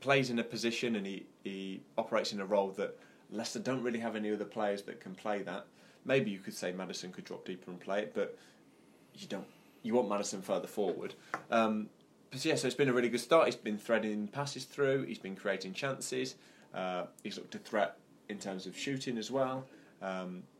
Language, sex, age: English, male, 20-39